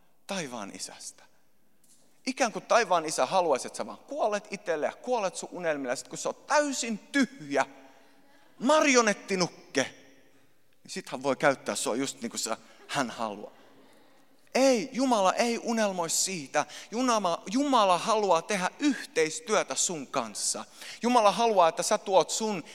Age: 30-49